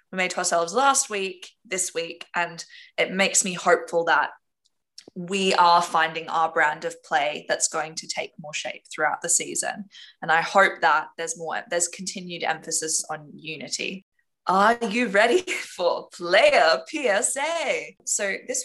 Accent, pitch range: Australian, 170-245 Hz